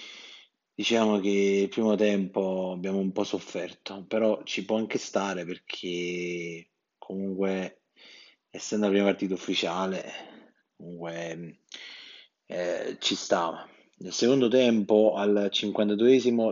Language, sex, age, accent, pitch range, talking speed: Italian, male, 30-49, native, 95-110 Hz, 110 wpm